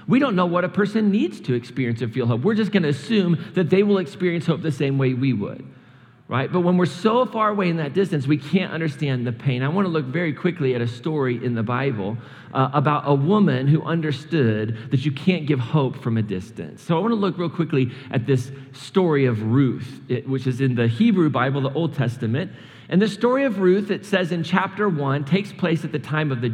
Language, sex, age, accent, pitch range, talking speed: English, male, 40-59, American, 130-180 Hz, 240 wpm